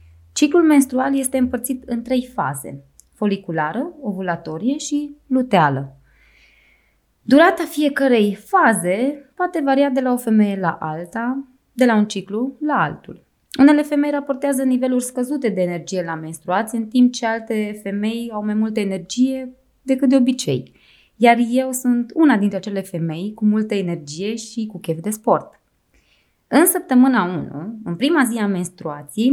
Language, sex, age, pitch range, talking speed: Romanian, female, 20-39, 190-270 Hz, 145 wpm